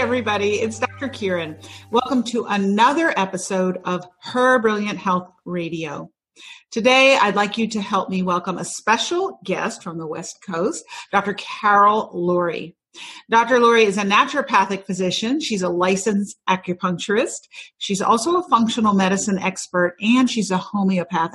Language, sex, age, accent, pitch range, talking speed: English, female, 40-59, American, 180-235 Hz, 145 wpm